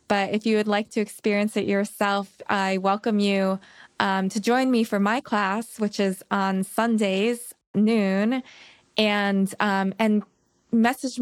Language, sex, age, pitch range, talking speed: English, female, 20-39, 190-215 Hz, 150 wpm